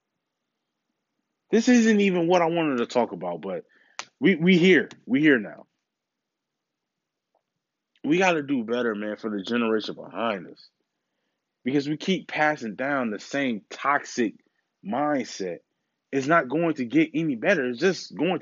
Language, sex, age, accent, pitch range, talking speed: English, male, 20-39, American, 100-145 Hz, 145 wpm